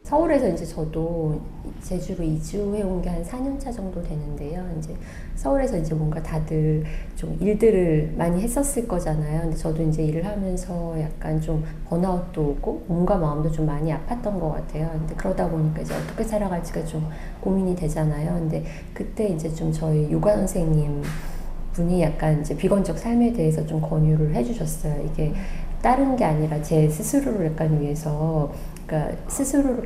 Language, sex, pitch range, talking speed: English, female, 155-185 Hz, 135 wpm